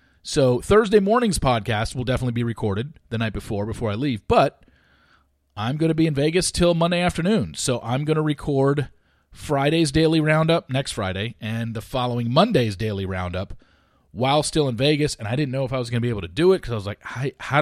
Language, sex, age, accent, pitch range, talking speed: English, male, 40-59, American, 105-155 Hz, 220 wpm